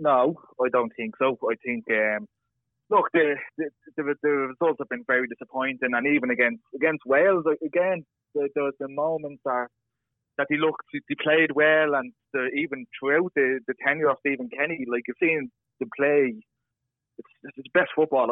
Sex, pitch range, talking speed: male, 125-155 Hz, 185 wpm